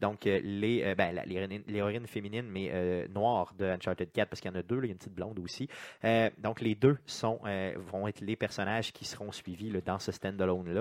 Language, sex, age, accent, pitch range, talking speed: French, male, 30-49, Canadian, 100-120 Hz, 255 wpm